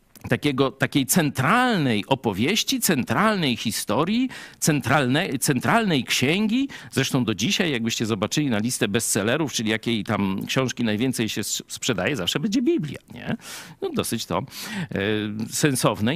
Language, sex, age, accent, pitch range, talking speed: Polish, male, 50-69, native, 115-175 Hz, 105 wpm